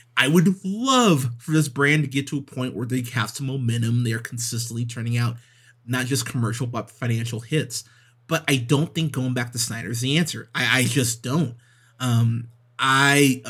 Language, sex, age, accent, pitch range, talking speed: English, male, 30-49, American, 120-140 Hz, 195 wpm